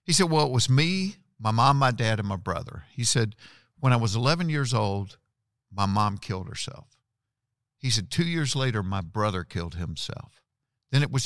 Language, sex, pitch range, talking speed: English, male, 110-140 Hz, 195 wpm